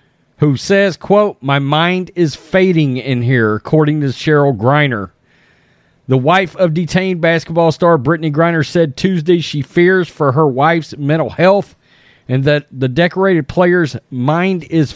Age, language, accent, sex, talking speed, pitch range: 40-59, English, American, male, 150 wpm, 135-180 Hz